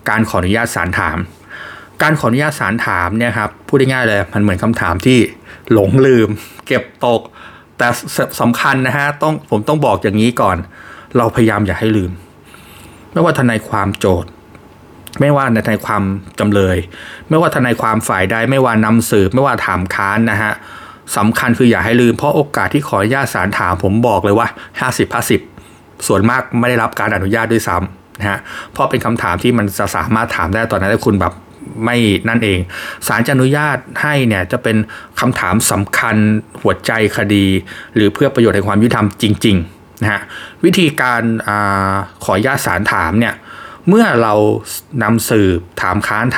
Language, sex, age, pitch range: Thai, male, 20-39, 100-120 Hz